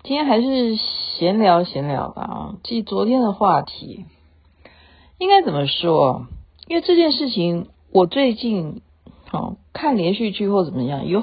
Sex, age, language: female, 50-69, Chinese